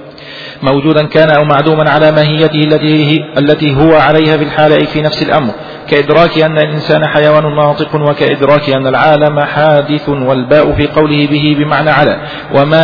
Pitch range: 145-155 Hz